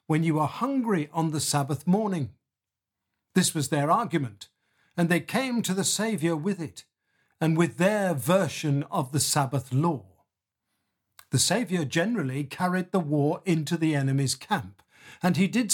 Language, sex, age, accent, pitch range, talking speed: English, male, 50-69, British, 140-190 Hz, 155 wpm